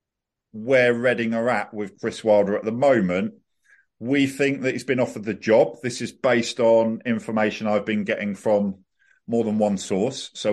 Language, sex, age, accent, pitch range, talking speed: English, male, 50-69, British, 105-130 Hz, 180 wpm